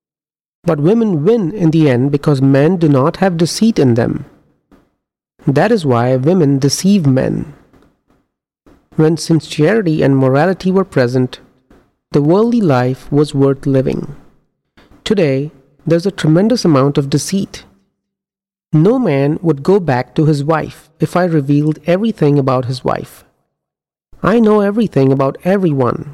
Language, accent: English, Indian